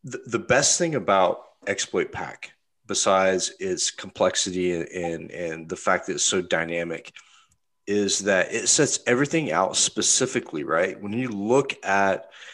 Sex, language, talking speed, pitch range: male, English, 140 wpm, 90-110 Hz